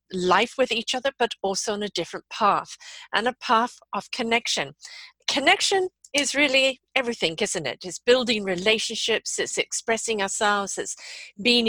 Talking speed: 150 wpm